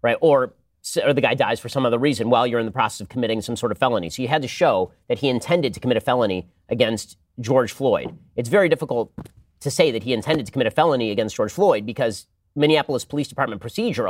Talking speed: 240 wpm